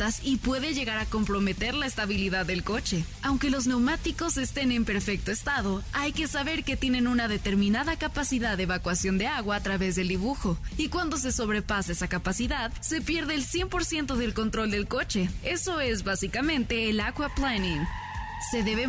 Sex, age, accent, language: female, 20-39, Mexican, Spanish